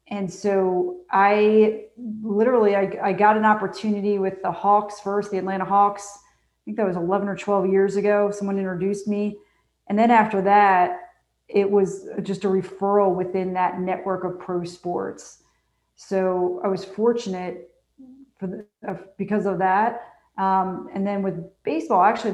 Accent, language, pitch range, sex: American, English, 180-205 Hz, female